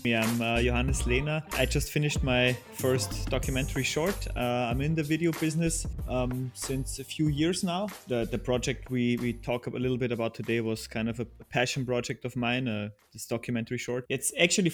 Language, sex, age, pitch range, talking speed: English, male, 20-39, 120-145 Hz, 200 wpm